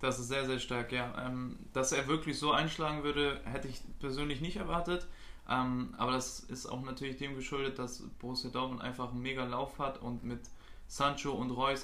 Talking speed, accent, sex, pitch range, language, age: 200 wpm, German, male, 125-145 Hz, German, 20-39